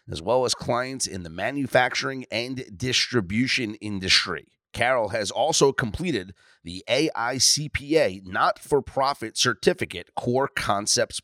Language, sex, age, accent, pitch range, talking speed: English, male, 30-49, American, 105-150 Hz, 105 wpm